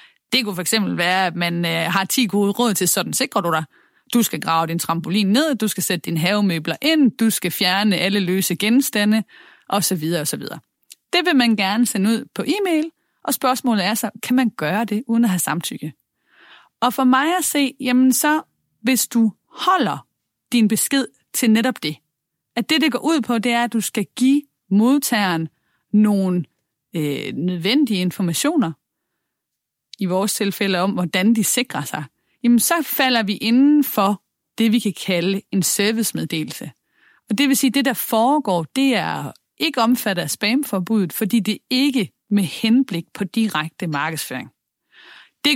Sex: female